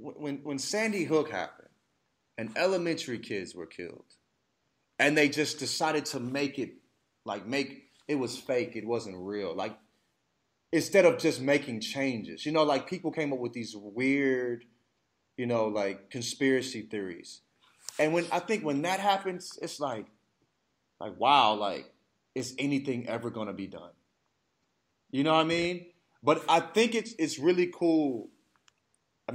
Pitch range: 120-165 Hz